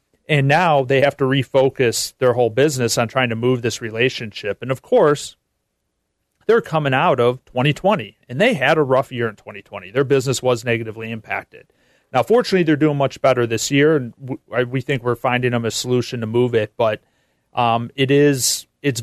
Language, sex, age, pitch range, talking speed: English, male, 40-59, 115-145 Hz, 185 wpm